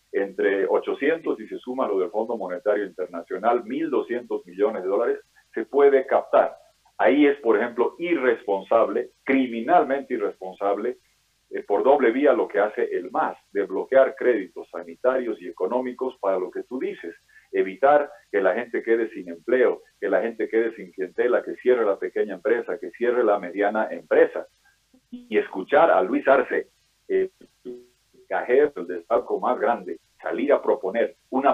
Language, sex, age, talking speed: Spanish, male, 50-69, 155 wpm